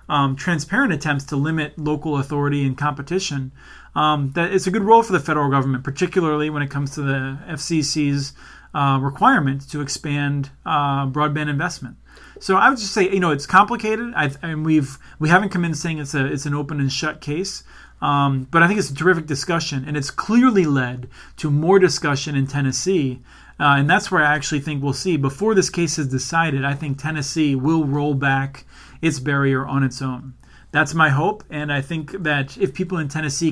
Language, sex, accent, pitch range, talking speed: English, male, American, 140-170 Hz, 200 wpm